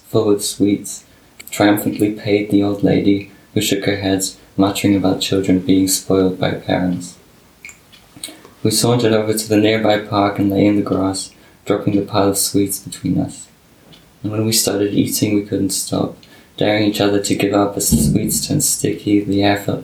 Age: 20-39